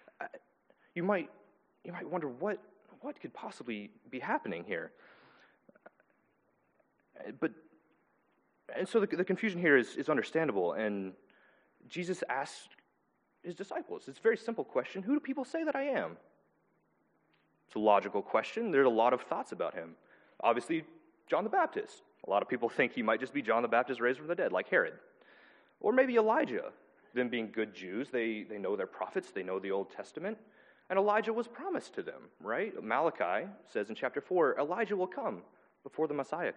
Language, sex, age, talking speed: English, male, 30-49, 175 wpm